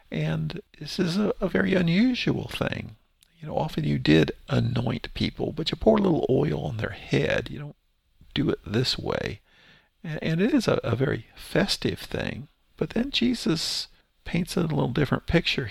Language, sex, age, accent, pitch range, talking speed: English, male, 50-69, American, 90-140 Hz, 180 wpm